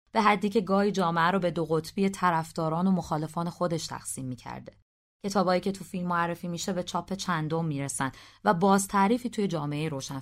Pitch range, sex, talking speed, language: 145-195 Hz, female, 195 wpm, Persian